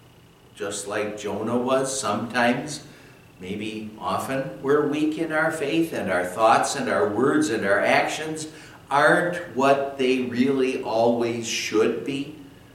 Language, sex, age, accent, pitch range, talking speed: English, male, 60-79, American, 110-145 Hz, 130 wpm